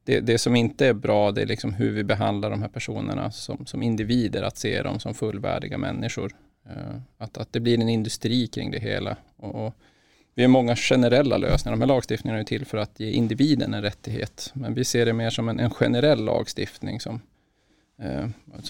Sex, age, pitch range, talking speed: male, 20-39, 115-130 Hz, 200 wpm